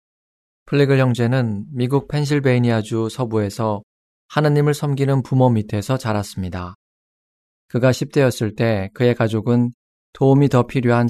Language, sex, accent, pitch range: Korean, male, native, 110-135 Hz